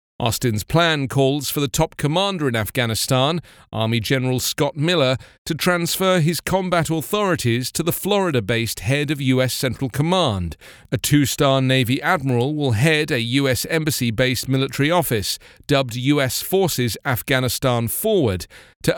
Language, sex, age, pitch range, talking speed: English, male, 40-59, 115-160 Hz, 135 wpm